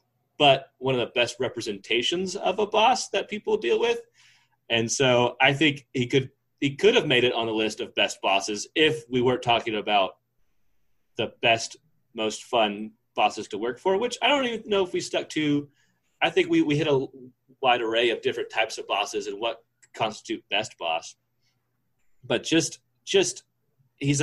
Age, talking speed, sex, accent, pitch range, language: 30-49, 185 wpm, male, American, 115-180 Hz, English